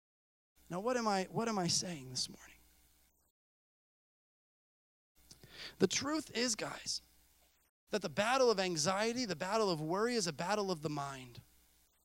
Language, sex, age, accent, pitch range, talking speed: English, male, 30-49, American, 170-290 Hz, 135 wpm